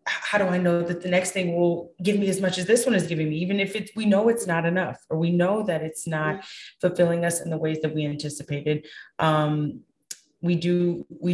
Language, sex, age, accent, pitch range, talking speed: English, female, 20-39, American, 150-180 Hz, 240 wpm